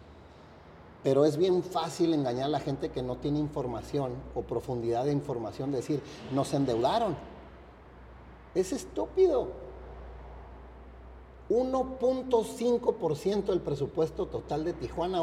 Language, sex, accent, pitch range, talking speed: Spanish, male, Mexican, 120-185 Hz, 105 wpm